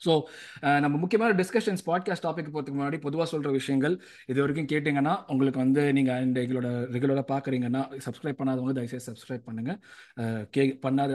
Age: 20-39